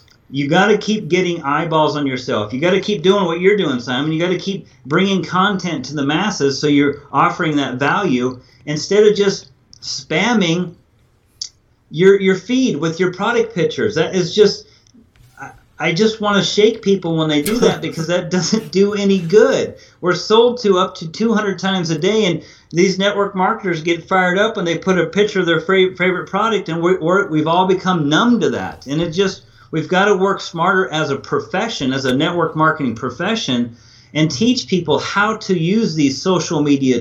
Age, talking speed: 40-59, 200 wpm